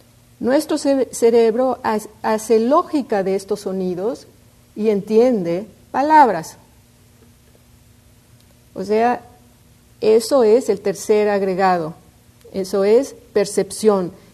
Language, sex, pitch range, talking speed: English, female, 155-235 Hz, 85 wpm